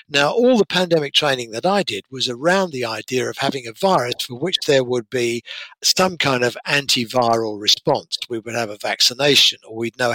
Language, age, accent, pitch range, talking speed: English, 60-79, British, 120-175 Hz, 200 wpm